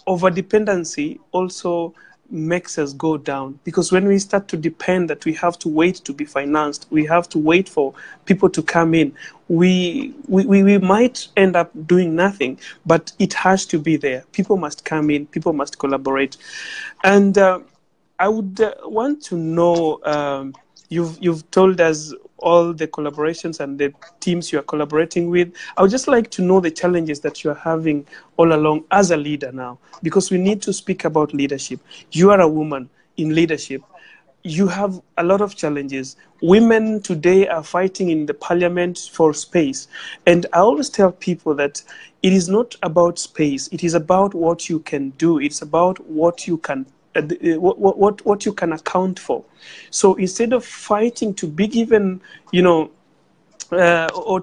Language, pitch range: English, 155-190 Hz